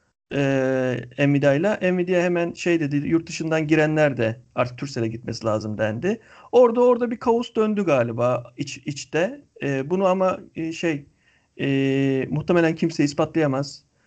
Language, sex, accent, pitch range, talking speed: Turkish, male, native, 135-180 Hz, 130 wpm